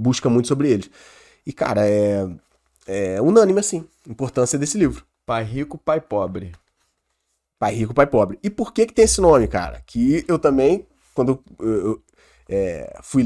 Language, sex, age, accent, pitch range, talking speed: Portuguese, male, 20-39, Brazilian, 110-150 Hz, 160 wpm